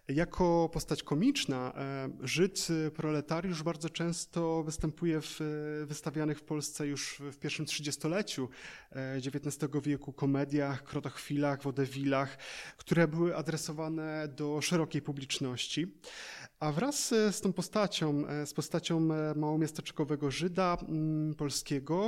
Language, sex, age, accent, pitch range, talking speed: Polish, male, 20-39, native, 145-170 Hz, 100 wpm